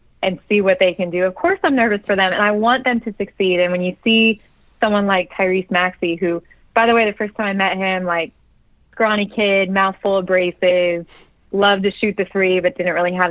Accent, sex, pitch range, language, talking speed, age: American, female, 175-205 Hz, English, 235 wpm, 20-39